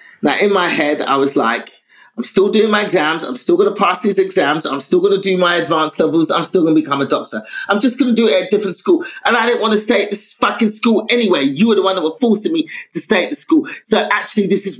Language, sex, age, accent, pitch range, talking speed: English, male, 30-49, British, 190-285 Hz, 290 wpm